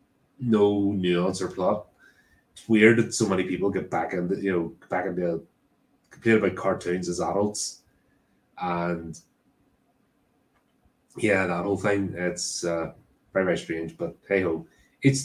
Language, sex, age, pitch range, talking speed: English, male, 30-49, 90-110 Hz, 140 wpm